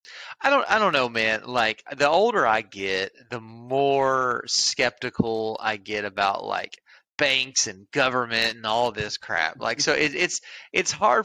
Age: 30-49